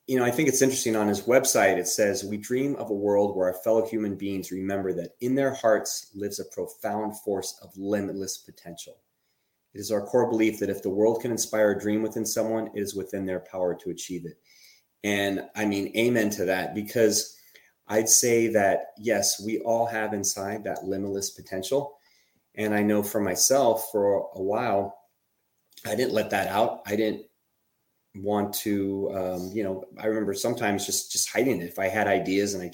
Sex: male